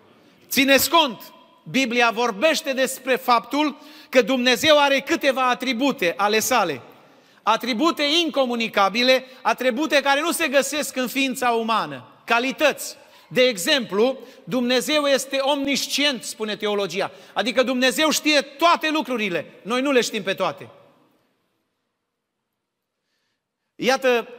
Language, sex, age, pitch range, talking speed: Romanian, male, 40-59, 205-270 Hz, 105 wpm